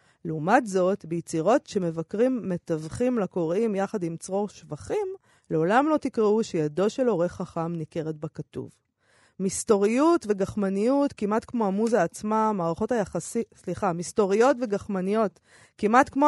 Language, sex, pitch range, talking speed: Hebrew, female, 180-245 Hz, 85 wpm